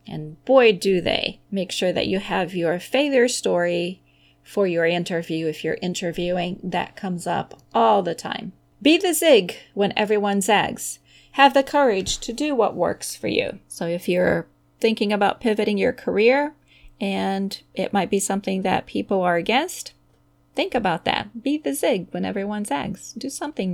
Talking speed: 170 wpm